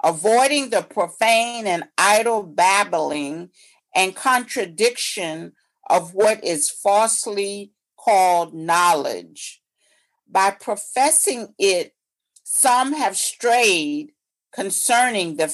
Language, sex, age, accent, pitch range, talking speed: English, female, 50-69, American, 195-260 Hz, 85 wpm